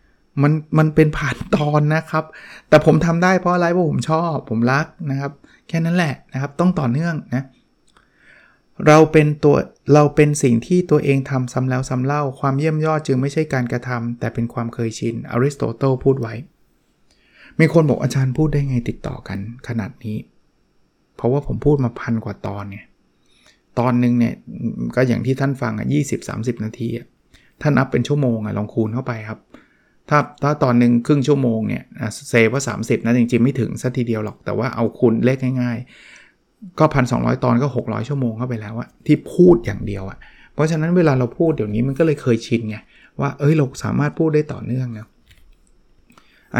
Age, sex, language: 20-39, male, Thai